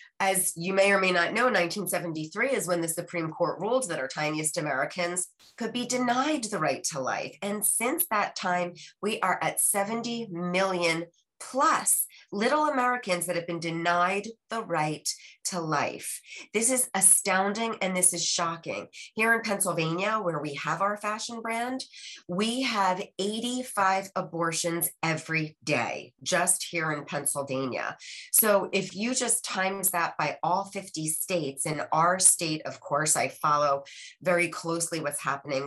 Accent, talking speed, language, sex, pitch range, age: American, 155 wpm, English, female, 160-205 Hz, 30-49